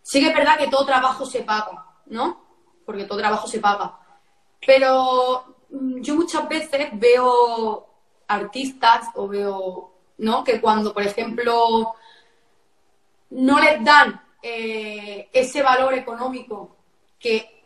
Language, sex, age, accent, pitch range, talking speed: Spanish, female, 20-39, Spanish, 225-270 Hz, 120 wpm